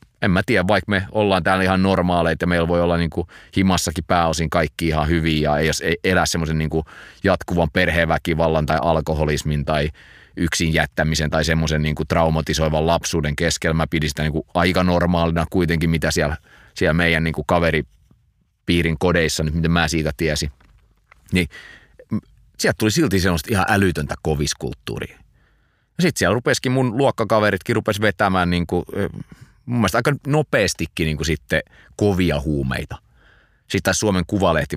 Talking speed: 145 wpm